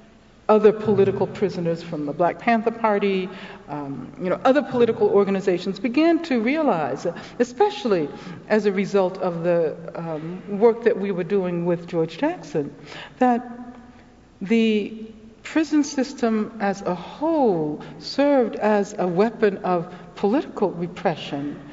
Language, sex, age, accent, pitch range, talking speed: English, female, 60-79, American, 185-260 Hz, 125 wpm